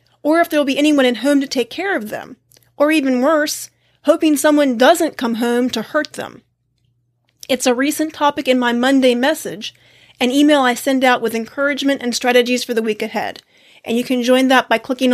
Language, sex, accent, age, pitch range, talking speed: English, female, American, 30-49, 240-300 Hz, 200 wpm